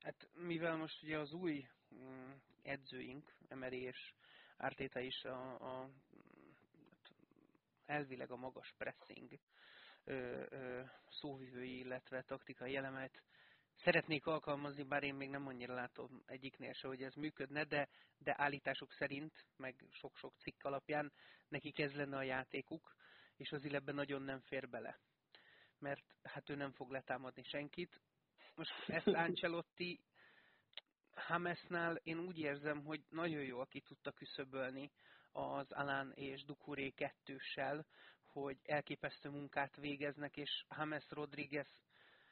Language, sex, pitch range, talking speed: Hungarian, male, 135-155 Hz, 125 wpm